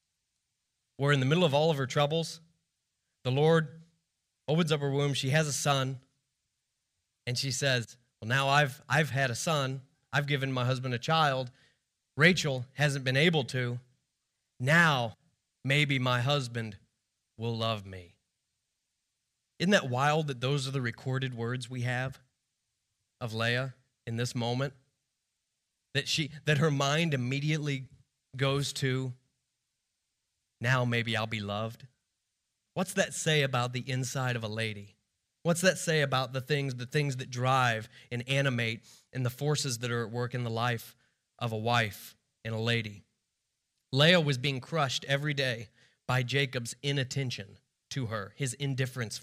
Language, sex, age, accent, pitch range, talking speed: English, male, 30-49, American, 120-145 Hz, 155 wpm